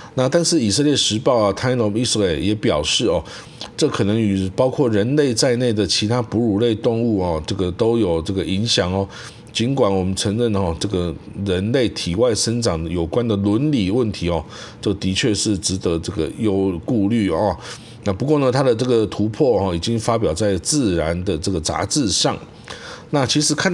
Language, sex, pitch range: Chinese, male, 100-125 Hz